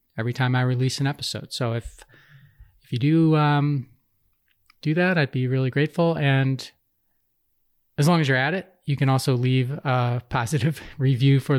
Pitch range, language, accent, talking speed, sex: 120-145 Hz, English, American, 170 wpm, male